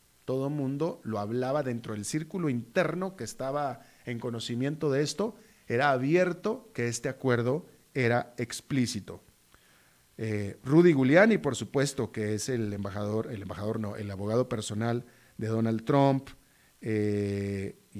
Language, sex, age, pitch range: Spanish, male, 40-59, 105-135 Hz